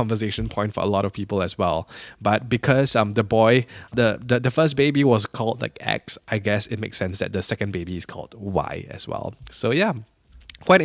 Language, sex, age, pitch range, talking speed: English, male, 10-29, 105-120 Hz, 220 wpm